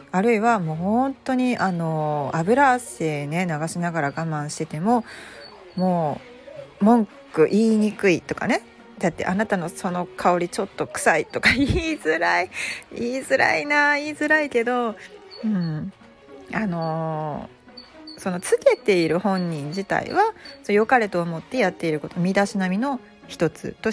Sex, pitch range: female, 165-245 Hz